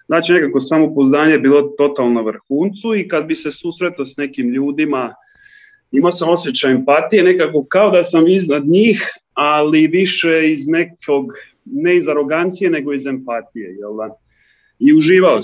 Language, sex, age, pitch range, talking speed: Croatian, male, 30-49, 130-170 Hz, 145 wpm